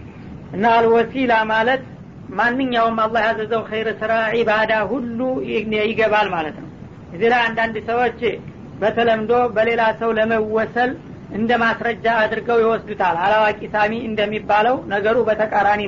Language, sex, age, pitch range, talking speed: Amharic, female, 40-59, 215-235 Hz, 105 wpm